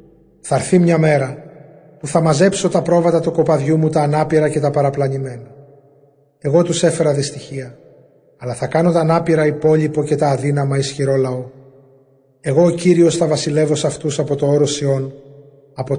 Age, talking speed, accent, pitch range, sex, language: 30-49, 165 wpm, native, 140-165 Hz, male, Greek